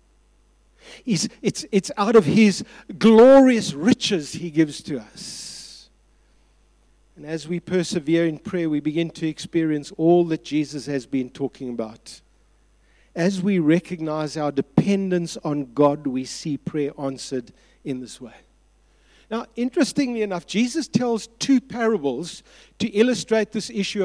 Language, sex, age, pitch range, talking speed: English, male, 50-69, 175-255 Hz, 130 wpm